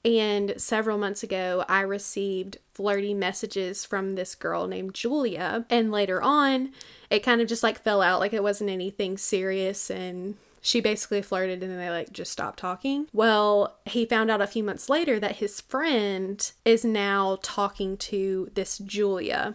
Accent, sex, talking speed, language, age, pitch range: American, female, 170 wpm, English, 20-39, 195-225 Hz